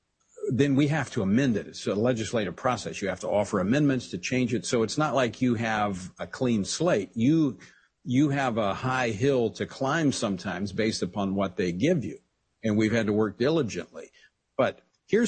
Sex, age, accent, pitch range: male, 50-69, American, 105-135 Hz